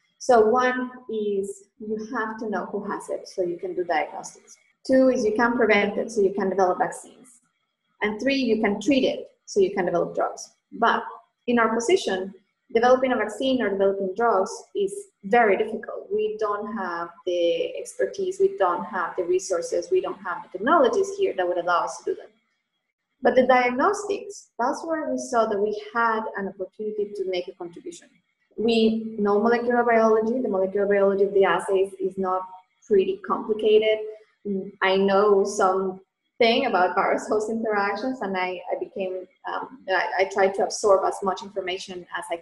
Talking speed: 180 wpm